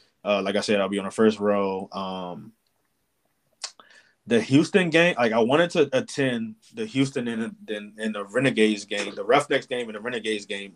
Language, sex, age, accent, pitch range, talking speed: English, male, 20-39, American, 100-120 Hz, 190 wpm